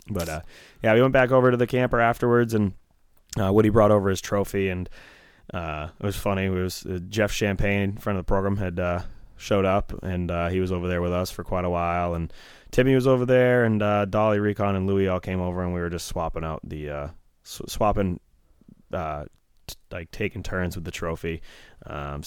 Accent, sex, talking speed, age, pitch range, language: American, male, 220 wpm, 20-39, 90-120 Hz, English